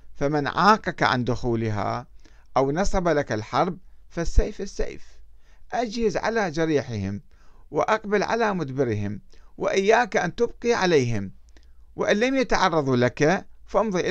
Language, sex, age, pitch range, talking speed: Arabic, male, 50-69, 110-170 Hz, 105 wpm